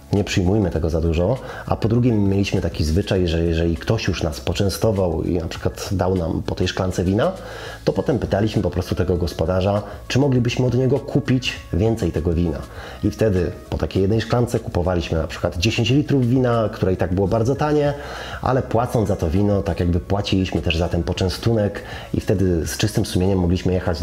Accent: native